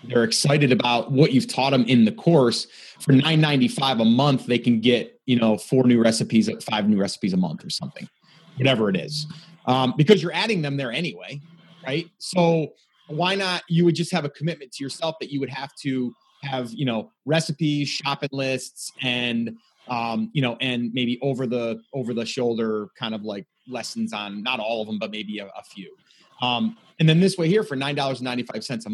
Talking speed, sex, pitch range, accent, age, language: 200 wpm, male, 125-170 Hz, American, 30-49, English